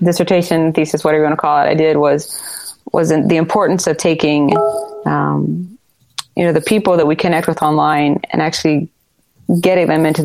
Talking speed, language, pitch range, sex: 180 wpm, English, 145-170 Hz, female